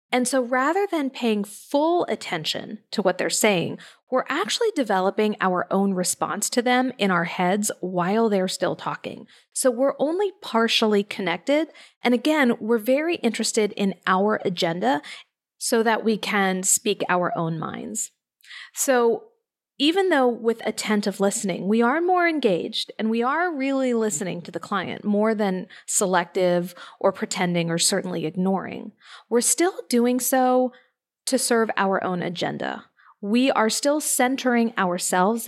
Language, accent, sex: English, American, female